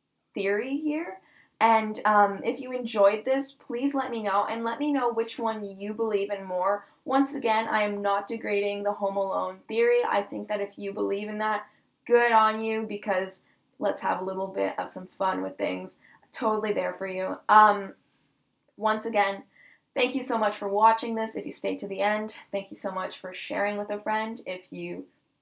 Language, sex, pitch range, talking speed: English, female, 200-250 Hz, 200 wpm